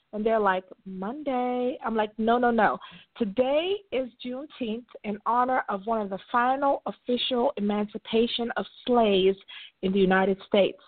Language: English